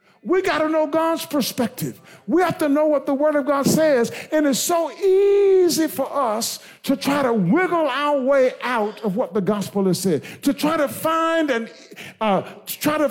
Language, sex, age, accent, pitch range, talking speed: English, male, 50-69, American, 205-310 Hz, 180 wpm